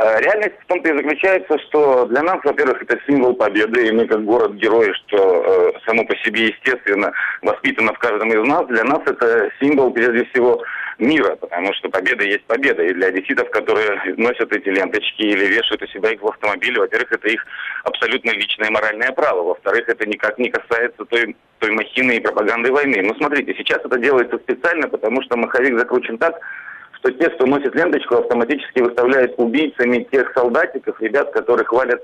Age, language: 40-59, Russian